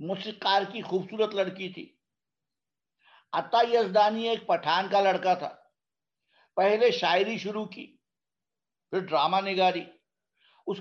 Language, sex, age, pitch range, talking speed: Urdu, male, 60-79, 180-215 Hz, 110 wpm